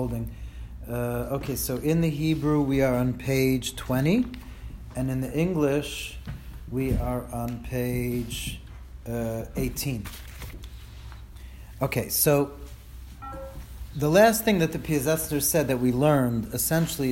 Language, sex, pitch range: English, male, 125-160 Hz